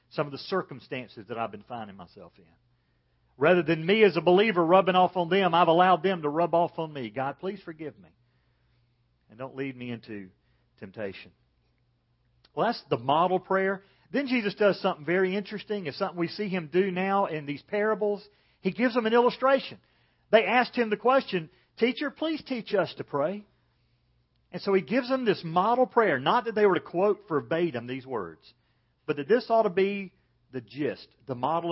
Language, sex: English, male